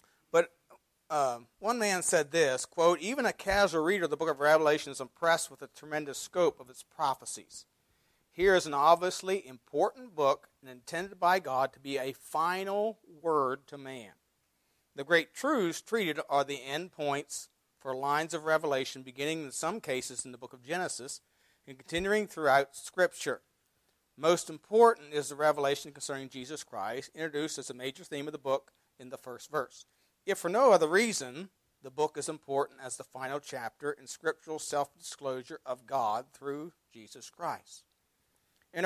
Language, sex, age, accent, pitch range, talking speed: English, male, 50-69, American, 135-170 Hz, 165 wpm